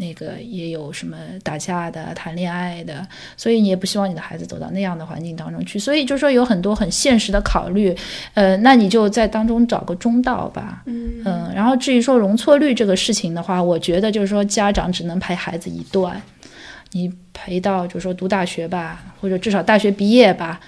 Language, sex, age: English, female, 20-39